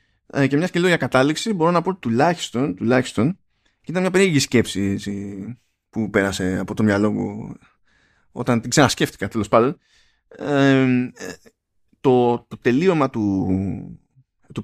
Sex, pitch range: male, 115-145 Hz